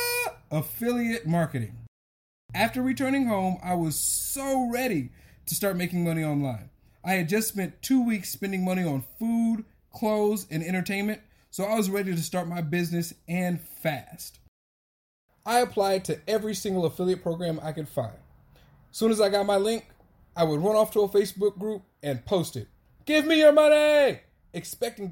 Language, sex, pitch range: English, male, 150-205 Hz